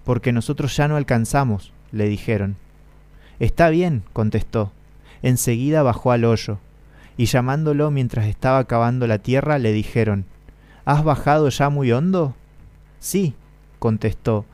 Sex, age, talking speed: male, 20-39, 125 wpm